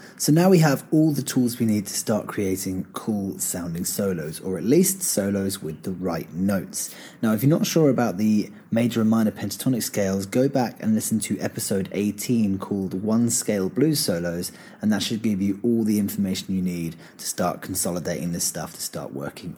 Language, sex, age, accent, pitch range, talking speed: English, male, 30-49, British, 95-130 Hz, 200 wpm